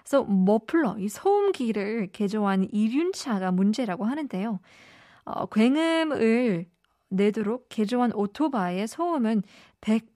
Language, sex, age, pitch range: Korean, female, 20-39, 200-255 Hz